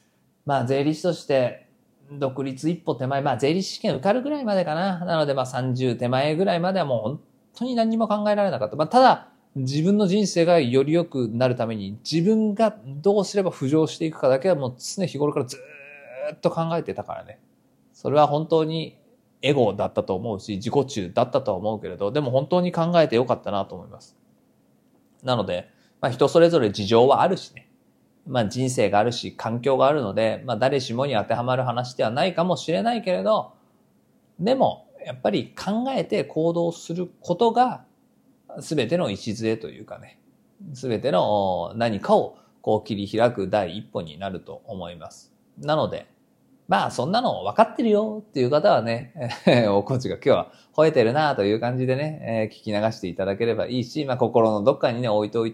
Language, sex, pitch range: Japanese, male, 115-175 Hz